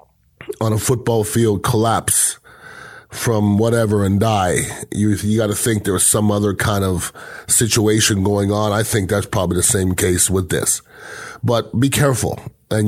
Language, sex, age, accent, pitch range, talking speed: English, male, 30-49, American, 105-120 Hz, 170 wpm